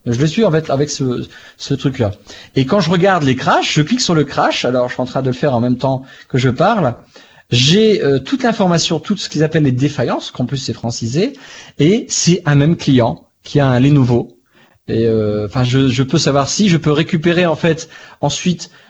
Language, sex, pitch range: French, male, 125-160 Hz